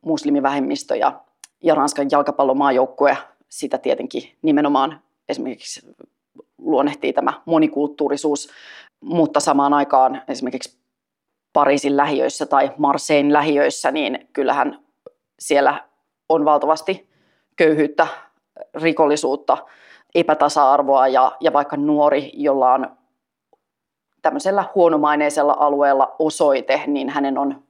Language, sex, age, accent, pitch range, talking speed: Finnish, female, 30-49, native, 145-160 Hz, 95 wpm